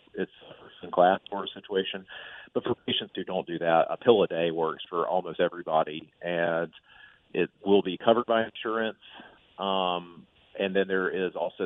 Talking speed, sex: 180 wpm, male